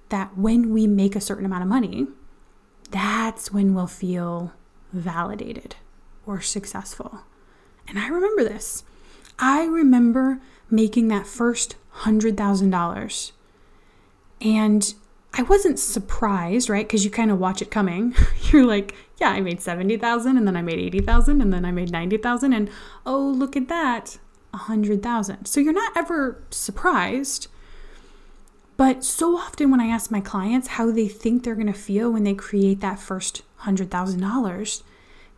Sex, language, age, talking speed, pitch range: female, English, 20-39, 145 wpm, 200-245 Hz